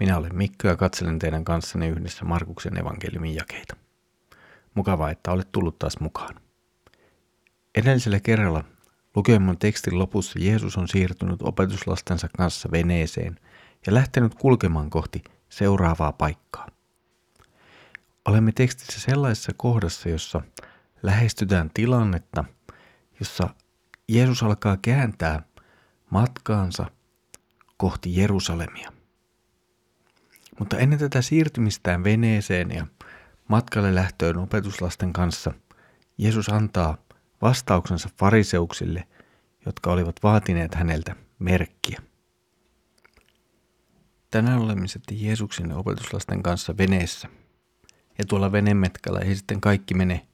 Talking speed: 95 wpm